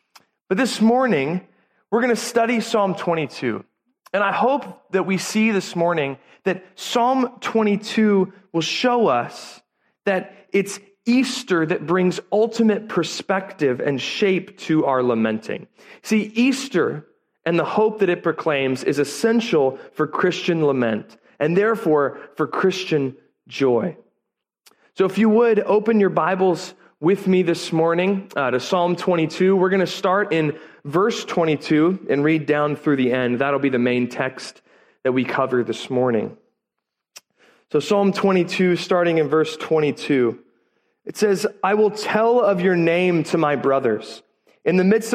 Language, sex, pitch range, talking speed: English, male, 150-200 Hz, 150 wpm